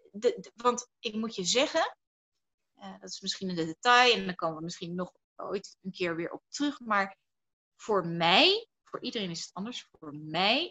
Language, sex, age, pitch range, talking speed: Dutch, female, 30-49, 180-265 Hz, 200 wpm